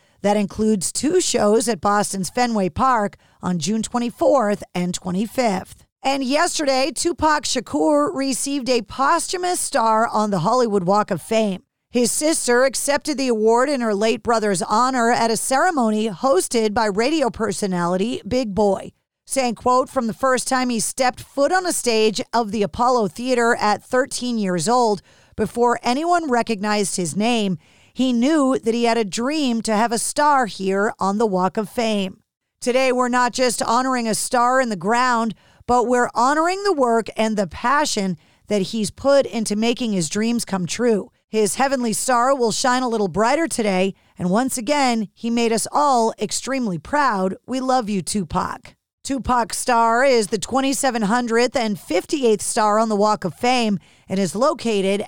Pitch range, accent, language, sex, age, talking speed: 205-255 Hz, American, English, female, 40-59, 165 wpm